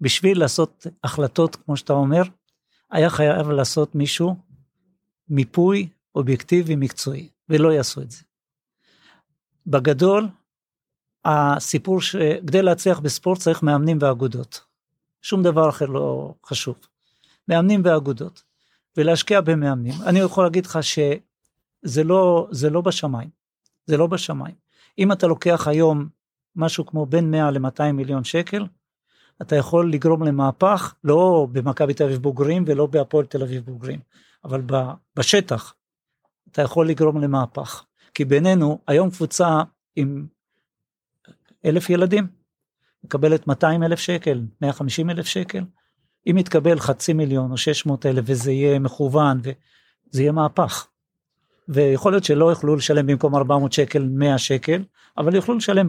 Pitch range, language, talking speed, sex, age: 140-175 Hz, Hebrew, 125 wpm, male, 50-69